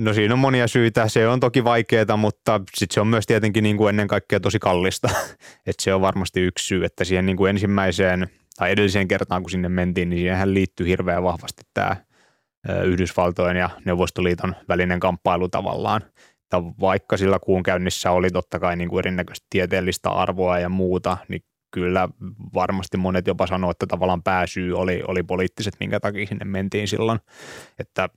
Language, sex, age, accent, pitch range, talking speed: Finnish, male, 20-39, native, 90-100 Hz, 175 wpm